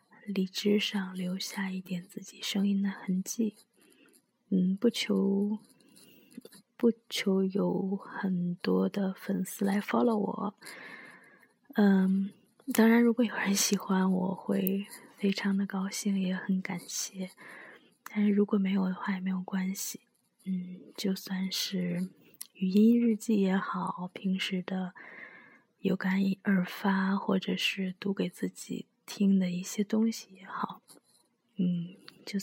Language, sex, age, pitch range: Chinese, female, 20-39, 190-210 Hz